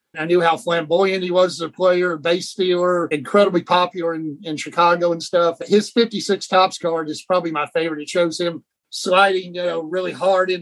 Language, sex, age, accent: English, male, 50-69, American